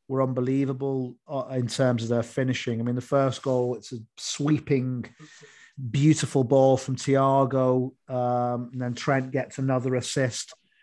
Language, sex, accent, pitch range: English, male, British, 125-145 Hz